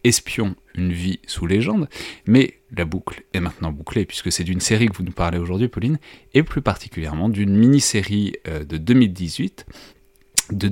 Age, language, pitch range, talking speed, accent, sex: 30-49, French, 85-105 Hz, 160 wpm, French, male